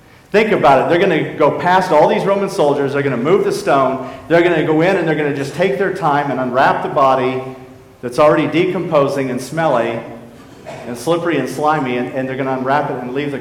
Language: English